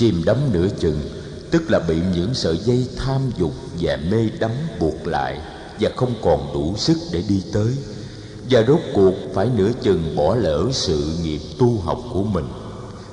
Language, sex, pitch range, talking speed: Vietnamese, male, 100-125 Hz, 180 wpm